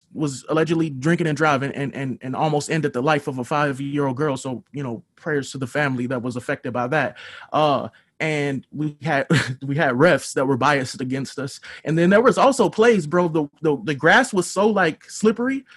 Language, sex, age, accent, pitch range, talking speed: English, male, 20-39, American, 145-195 Hz, 215 wpm